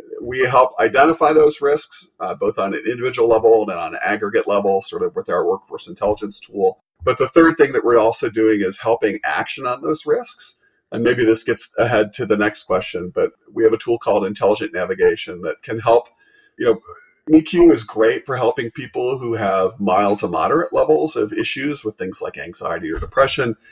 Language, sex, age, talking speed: English, male, 40-59, 200 wpm